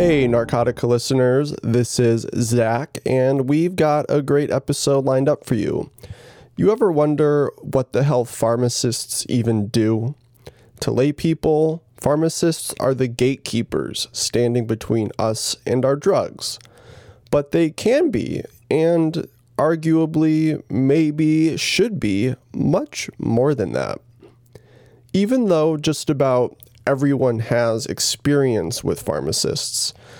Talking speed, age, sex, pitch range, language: 120 wpm, 20-39, male, 120-150 Hz, English